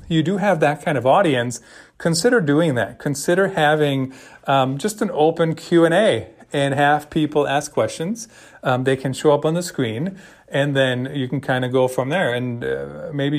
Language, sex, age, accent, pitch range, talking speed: English, male, 40-59, American, 125-160 Hz, 190 wpm